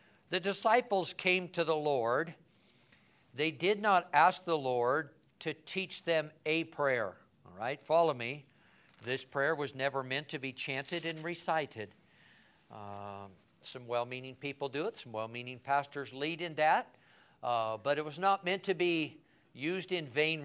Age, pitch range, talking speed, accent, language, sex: 60-79, 140-190 Hz, 160 wpm, American, English, male